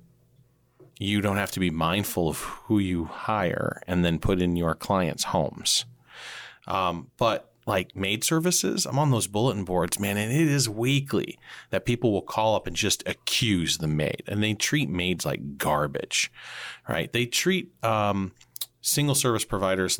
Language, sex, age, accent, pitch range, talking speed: English, male, 40-59, American, 80-120 Hz, 165 wpm